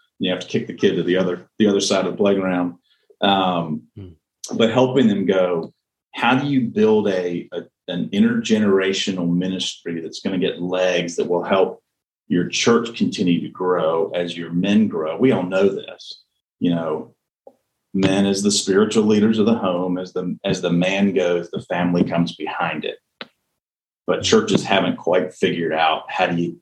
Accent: American